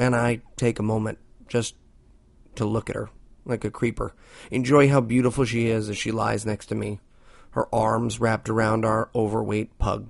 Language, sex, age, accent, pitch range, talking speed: English, male, 30-49, American, 115-140 Hz, 185 wpm